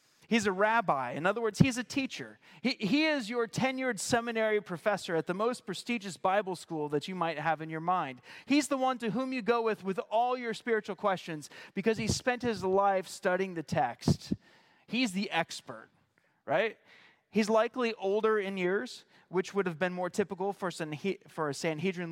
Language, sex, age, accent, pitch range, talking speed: English, male, 30-49, American, 155-210 Hz, 190 wpm